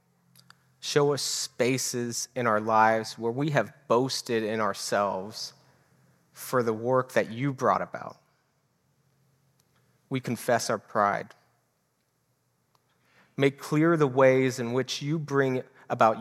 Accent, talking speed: American, 120 wpm